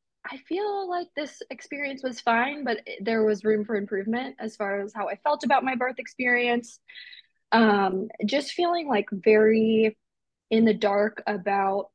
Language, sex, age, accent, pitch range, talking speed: English, female, 20-39, American, 205-235 Hz, 160 wpm